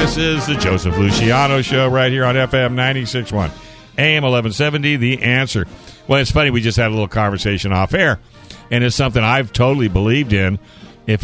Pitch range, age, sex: 115-135 Hz, 60-79, male